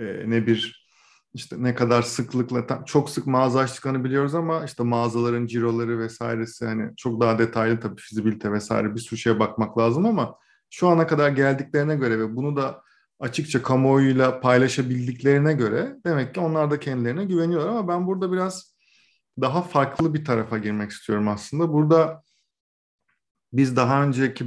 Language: Turkish